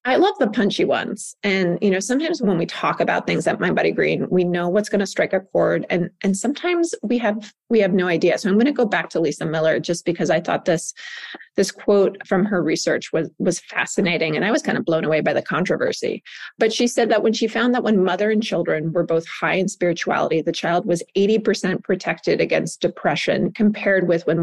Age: 30-49